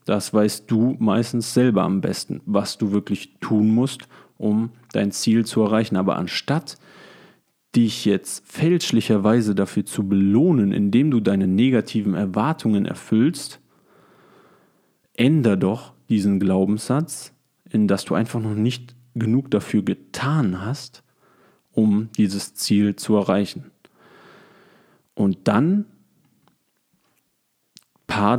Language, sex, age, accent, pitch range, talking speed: German, male, 40-59, German, 105-125 Hz, 110 wpm